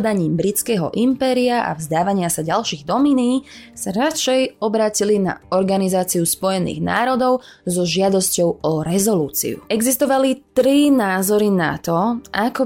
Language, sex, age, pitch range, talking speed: Slovak, female, 20-39, 180-255 Hz, 115 wpm